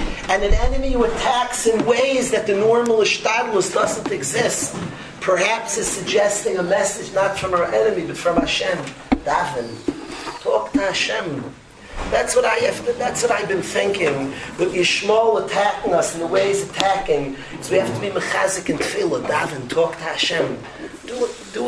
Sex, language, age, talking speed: male, English, 40-59, 170 wpm